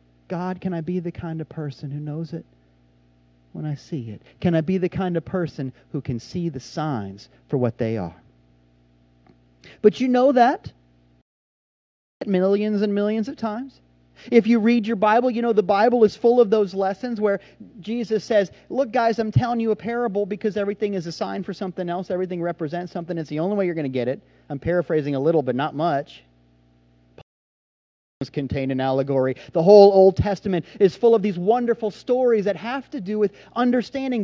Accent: American